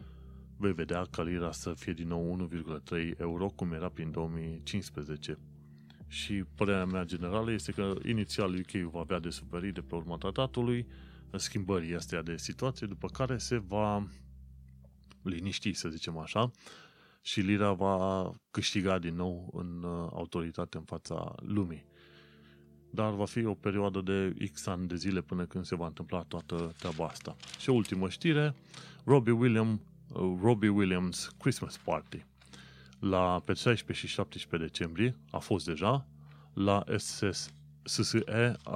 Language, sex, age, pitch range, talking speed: Romanian, male, 30-49, 80-105 Hz, 140 wpm